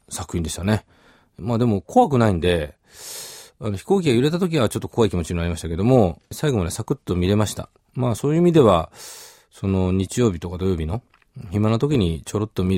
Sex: male